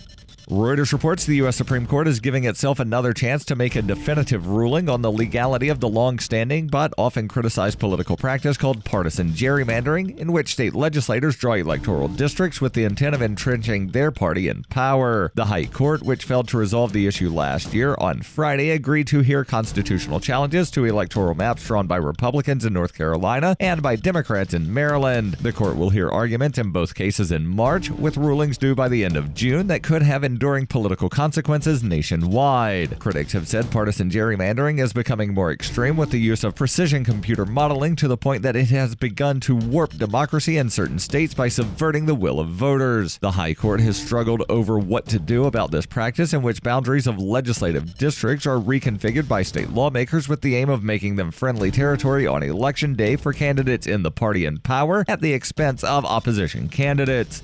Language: English